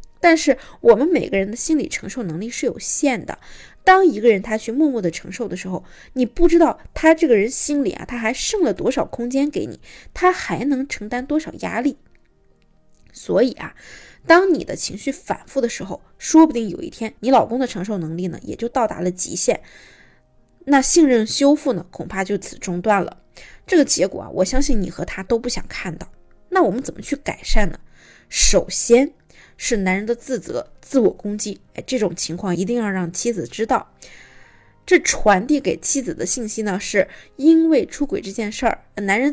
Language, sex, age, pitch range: Chinese, female, 20-39, 200-295 Hz